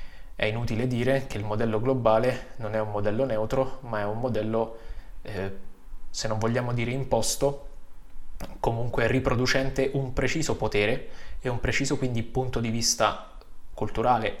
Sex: male